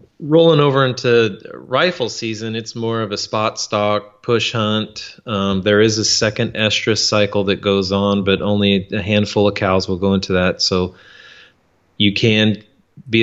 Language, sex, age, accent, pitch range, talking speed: English, male, 30-49, American, 100-115 Hz, 170 wpm